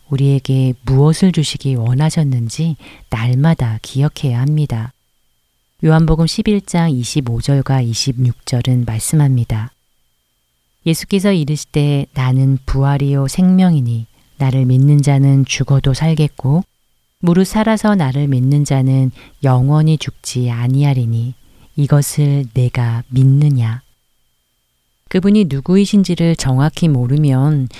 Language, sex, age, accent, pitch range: Korean, female, 40-59, native, 125-155 Hz